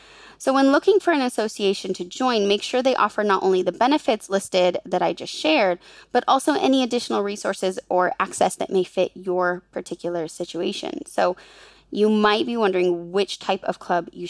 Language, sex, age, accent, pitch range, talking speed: English, female, 20-39, American, 180-225 Hz, 185 wpm